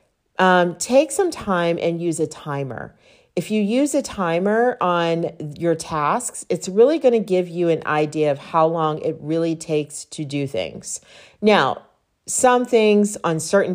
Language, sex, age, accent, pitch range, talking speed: English, female, 40-59, American, 150-190 Hz, 165 wpm